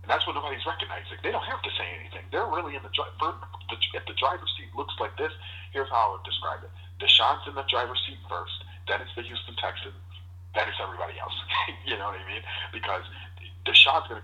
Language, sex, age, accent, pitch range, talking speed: English, male, 40-59, American, 90-100 Hz, 220 wpm